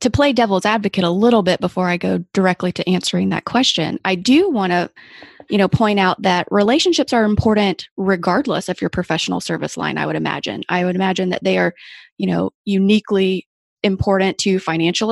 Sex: female